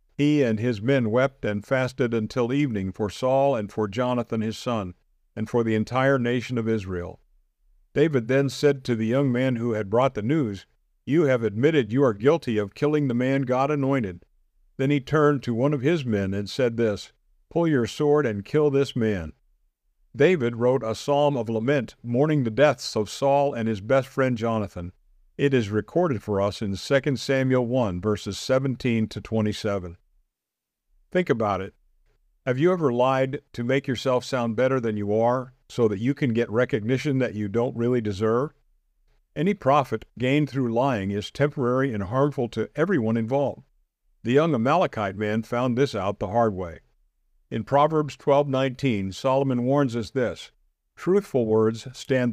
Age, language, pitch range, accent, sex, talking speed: 50-69, English, 105-135 Hz, American, male, 175 wpm